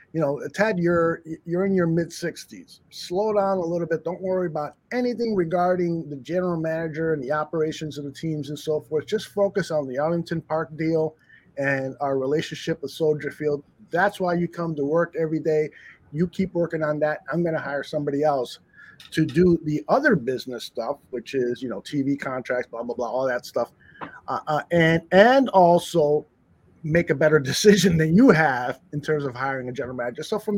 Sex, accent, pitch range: male, American, 150-200 Hz